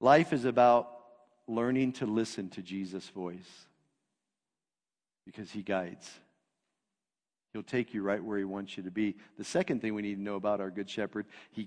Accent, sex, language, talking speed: American, male, English, 175 wpm